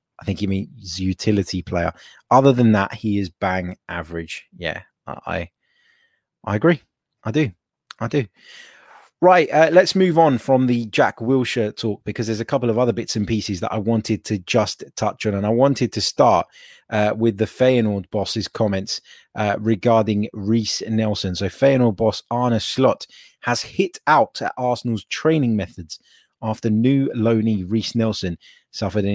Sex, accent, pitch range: male, British, 100-130 Hz